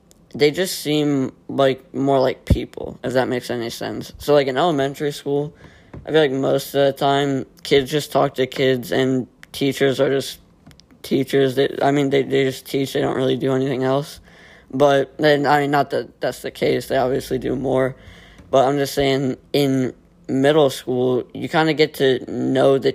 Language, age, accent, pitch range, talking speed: English, 20-39, American, 130-145 Hz, 195 wpm